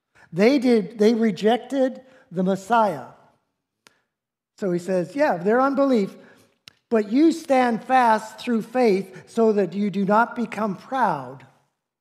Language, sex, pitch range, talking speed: English, male, 180-245 Hz, 125 wpm